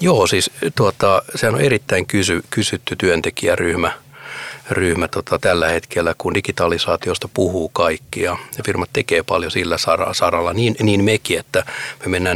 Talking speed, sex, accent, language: 145 wpm, male, native, Finnish